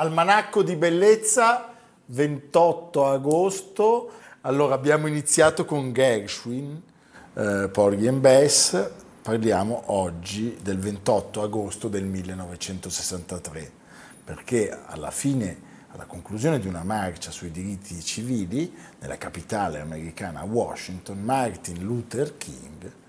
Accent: native